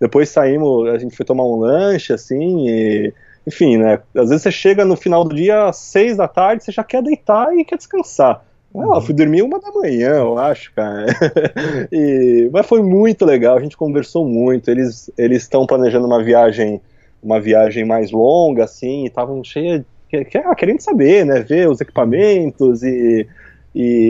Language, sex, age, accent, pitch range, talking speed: Portuguese, male, 20-39, Brazilian, 115-170 Hz, 175 wpm